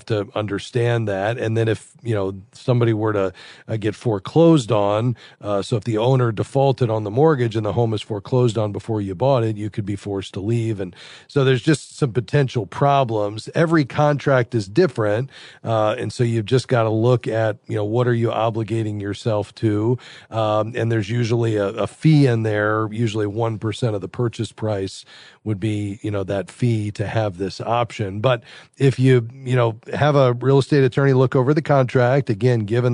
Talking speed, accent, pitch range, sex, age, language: 200 wpm, American, 110-125 Hz, male, 40-59, English